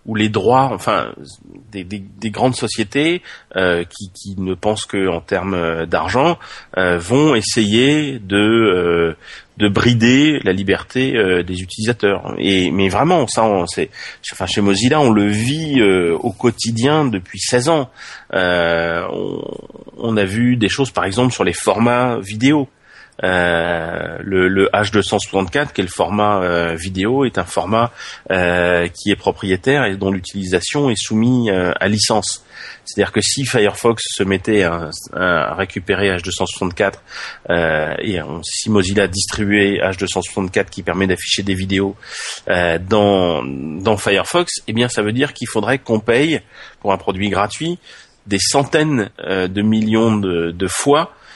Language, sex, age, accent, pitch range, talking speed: English, male, 30-49, French, 95-120 Hz, 150 wpm